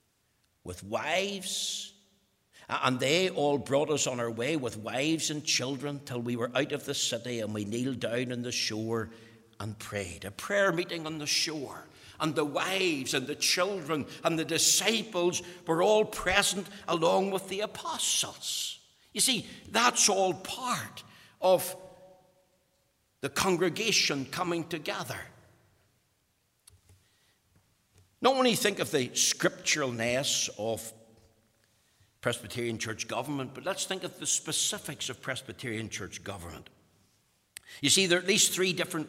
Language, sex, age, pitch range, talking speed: English, male, 60-79, 115-180 Hz, 140 wpm